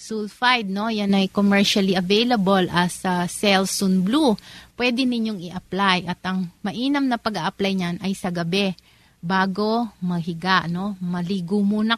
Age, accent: 30-49, native